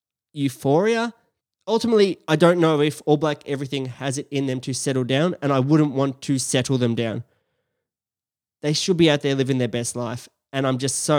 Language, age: English, 20-39